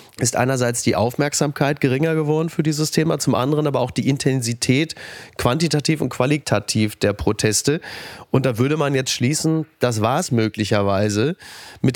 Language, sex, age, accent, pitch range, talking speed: German, male, 30-49, German, 120-150 Hz, 155 wpm